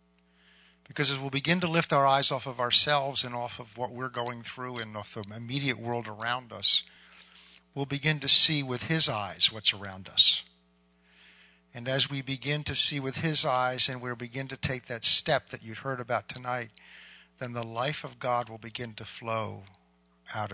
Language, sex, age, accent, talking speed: English, male, 50-69, American, 195 wpm